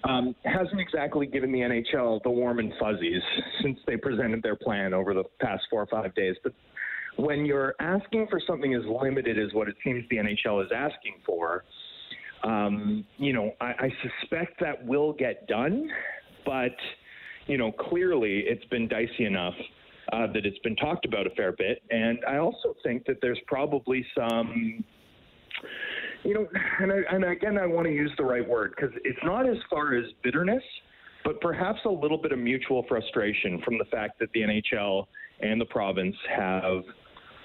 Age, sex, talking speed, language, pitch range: 30-49, male, 180 wpm, English, 110-160 Hz